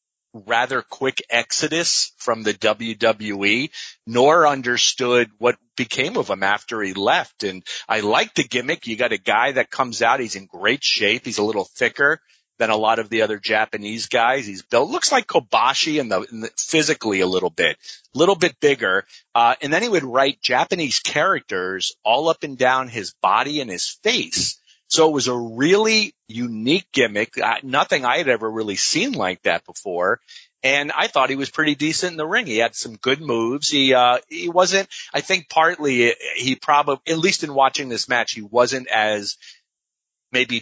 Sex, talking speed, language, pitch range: male, 190 wpm, English, 110-155 Hz